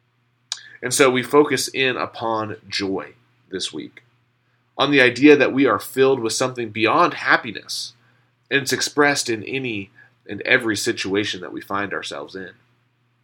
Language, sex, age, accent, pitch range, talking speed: English, male, 30-49, American, 120-140 Hz, 150 wpm